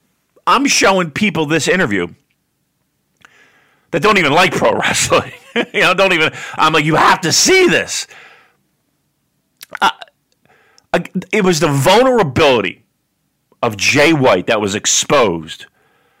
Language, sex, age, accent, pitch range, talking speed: English, male, 40-59, American, 155-250 Hz, 120 wpm